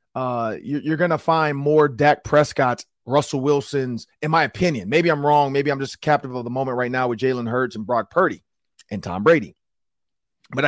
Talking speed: 190 wpm